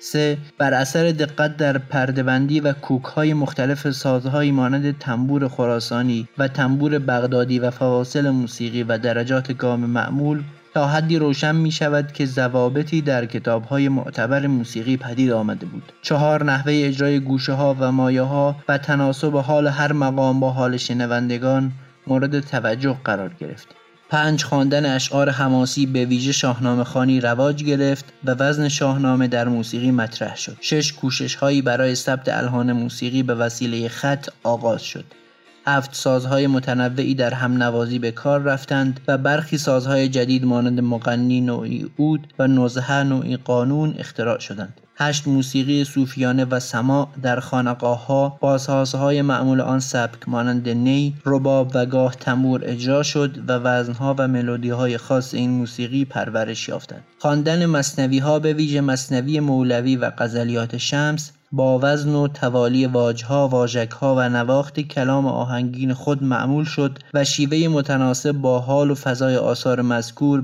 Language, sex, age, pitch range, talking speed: Persian, male, 30-49, 125-140 Hz, 145 wpm